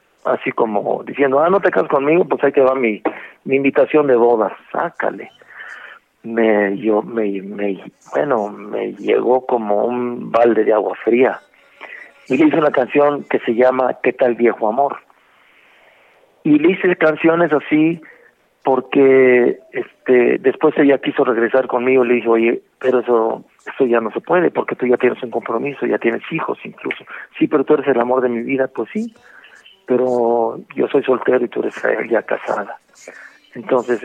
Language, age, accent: Spanish, 50-69, Mexican